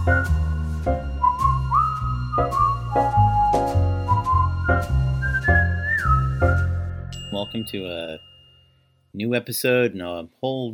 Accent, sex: American, male